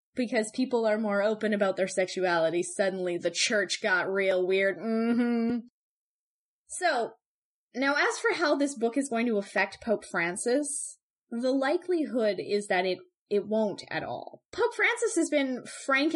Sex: female